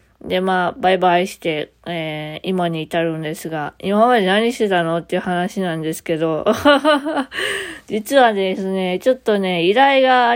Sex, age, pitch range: female, 20-39, 185-250 Hz